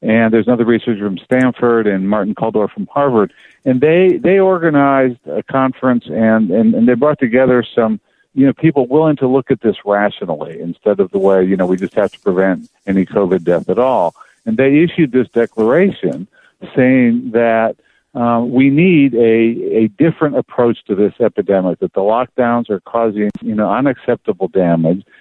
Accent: American